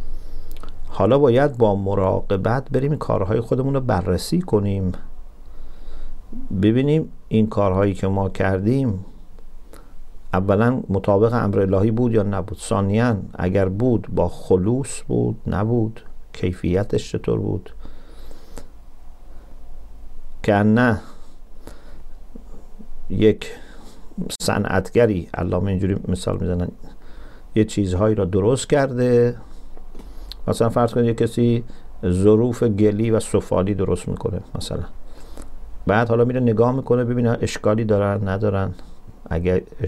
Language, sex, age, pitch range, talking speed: English, male, 50-69, 90-110 Hz, 105 wpm